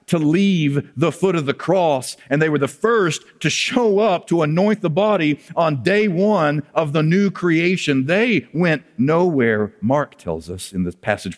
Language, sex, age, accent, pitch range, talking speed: English, male, 50-69, American, 120-185 Hz, 185 wpm